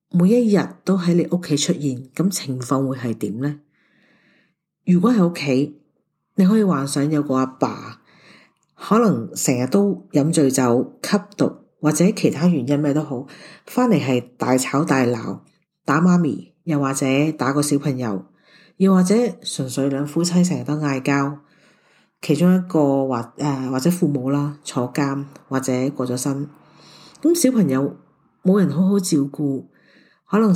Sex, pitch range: female, 140-180 Hz